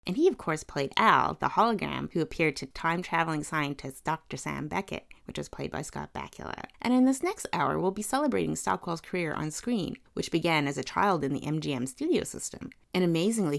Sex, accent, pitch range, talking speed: female, American, 150-195 Hz, 210 wpm